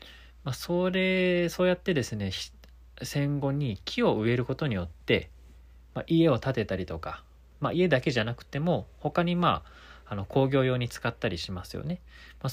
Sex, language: male, Japanese